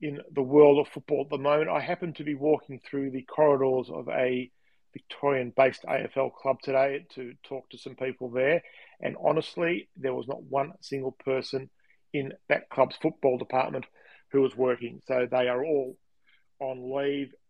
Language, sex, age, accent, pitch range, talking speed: English, male, 40-59, Australian, 130-150 Hz, 170 wpm